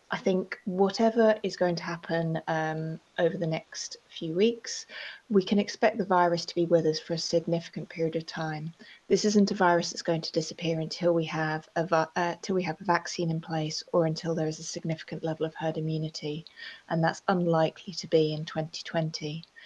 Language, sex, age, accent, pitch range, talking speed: English, female, 30-49, British, 160-185 Hz, 200 wpm